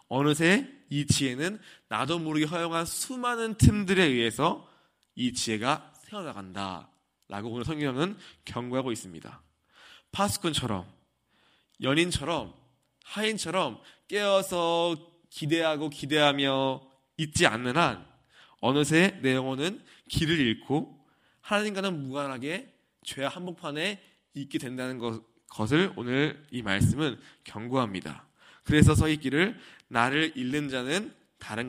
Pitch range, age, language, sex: 120-165 Hz, 20-39, Korean, male